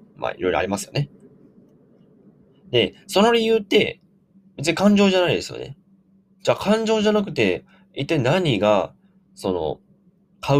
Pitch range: 115-195 Hz